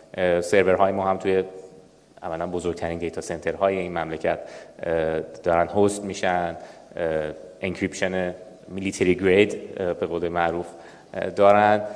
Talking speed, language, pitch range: 110 wpm, Persian, 90-110 Hz